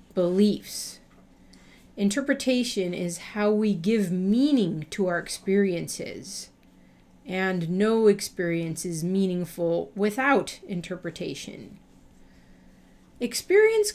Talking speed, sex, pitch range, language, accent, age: 75 wpm, female, 175-215 Hz, English, American, 40-59